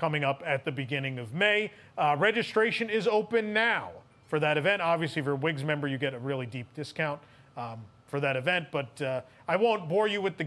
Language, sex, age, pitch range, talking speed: English, male, 30-49, 145-190 Hz, 225 wpm